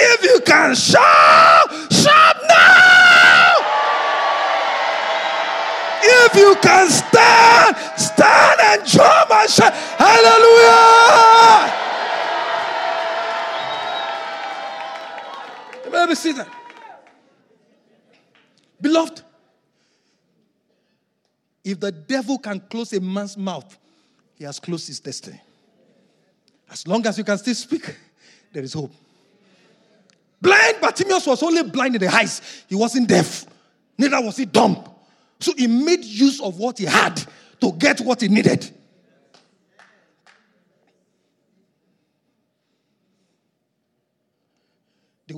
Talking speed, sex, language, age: 95 wpm, male, English, 50-69